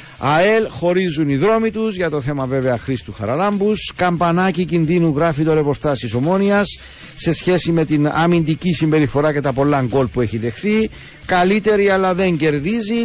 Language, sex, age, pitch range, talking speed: Greek, male, 50-69, 130-175 Hz, 165 wpm